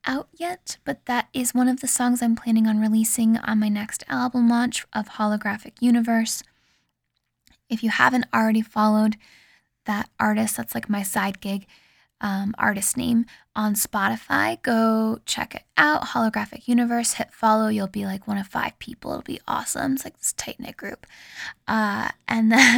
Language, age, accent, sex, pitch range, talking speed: English, 10-29, American, female, 220-250 Hz, 165 wpm